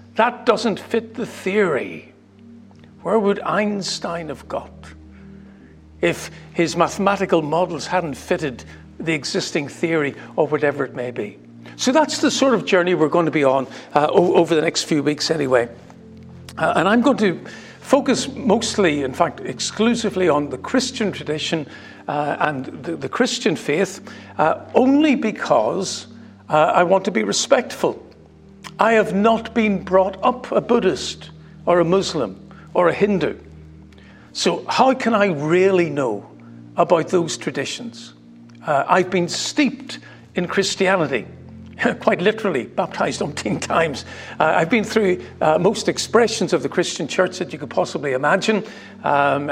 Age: 60-79